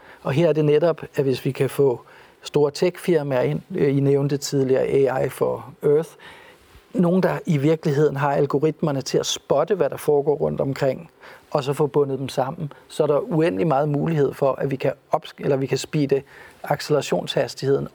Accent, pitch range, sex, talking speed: native, 140-170 Hz, male, 175 wpm